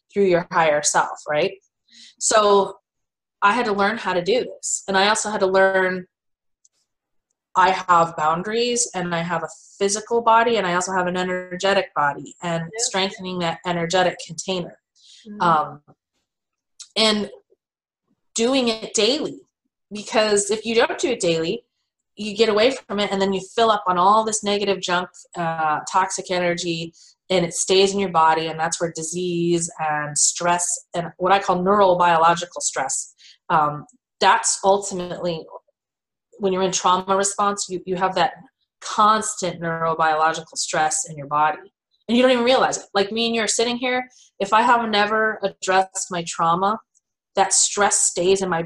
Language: English